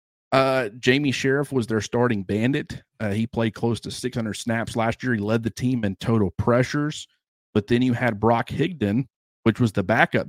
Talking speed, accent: 190 wpm, American